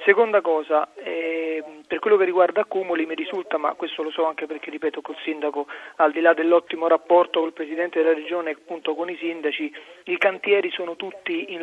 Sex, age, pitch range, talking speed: male, 40-59, 160-200 Hz, 195 wpm